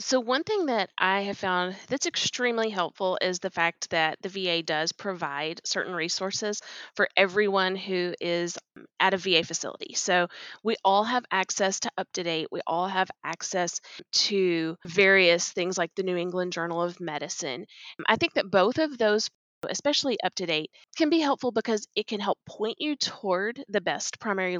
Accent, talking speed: American, 175 wpm